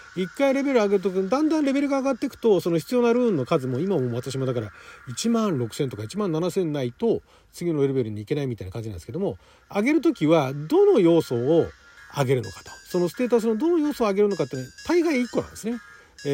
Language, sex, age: Japanese, male, 40-59